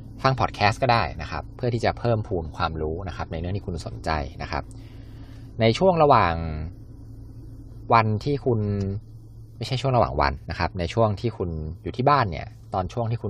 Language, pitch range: Thai, 90-115 Hz